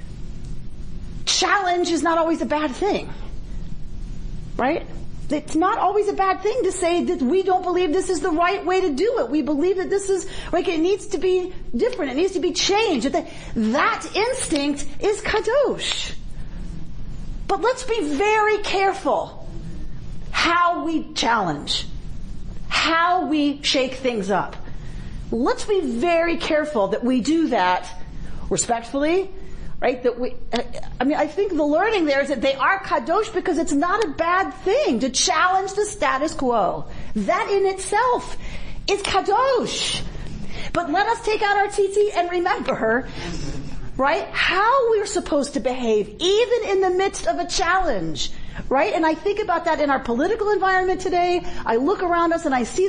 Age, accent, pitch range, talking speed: 40-59, American, 300-390 Hz, 160 wpm